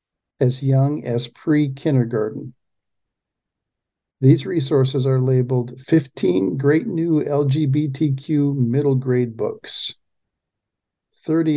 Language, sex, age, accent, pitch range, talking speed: English, male, 50-69, American, 125-145 Hz, 85 wpm